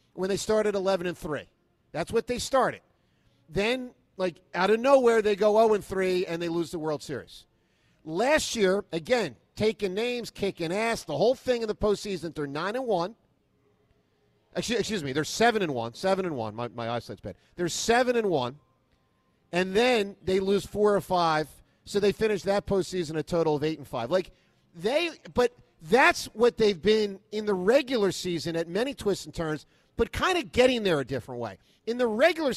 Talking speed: 195 wpm